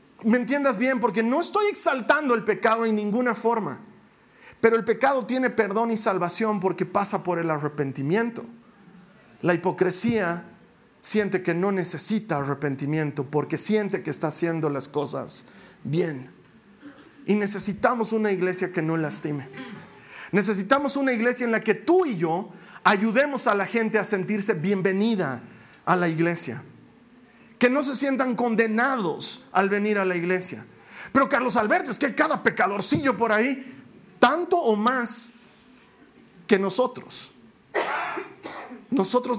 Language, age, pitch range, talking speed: Spanish, 40-59, 185-245 Hz, 135 wpm